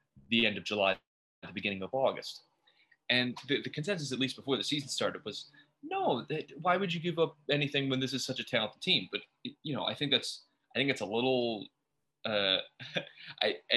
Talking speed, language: 195 wpm, English